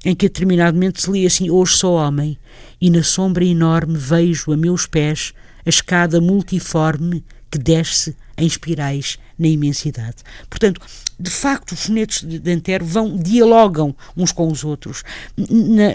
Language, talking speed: Portuguese, 145 wpm